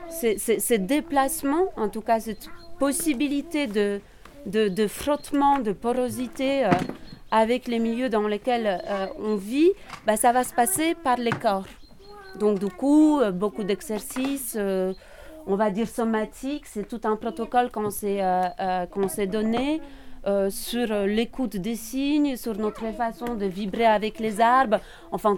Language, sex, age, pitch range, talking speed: French, female, 40-59, 205-260 Hz, 155 wpm